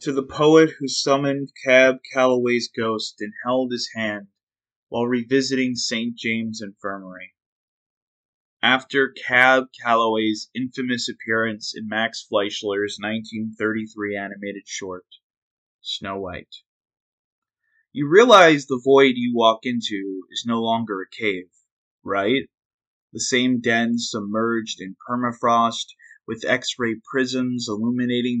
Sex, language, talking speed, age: male, English, 110 wpm, 30-49